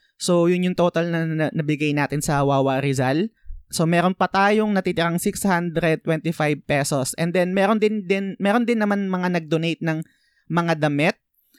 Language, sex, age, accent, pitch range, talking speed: Filipino, male, 20-39, native, 150-185 Hz, 155 wpm